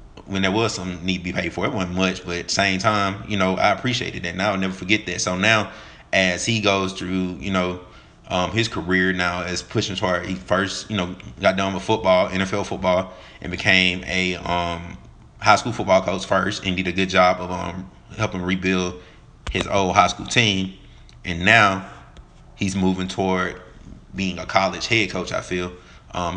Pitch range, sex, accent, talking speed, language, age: 90-100 Hz, male, American, 200 wpm, English, 30-49